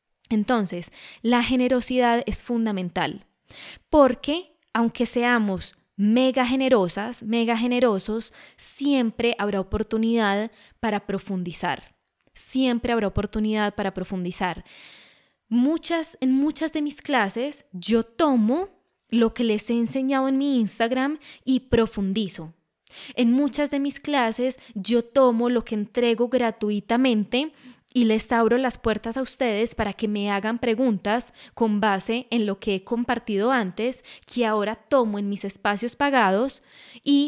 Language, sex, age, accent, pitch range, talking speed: Spanish, female, 10-29, Colombian, 210-250 Hz, 125 wpm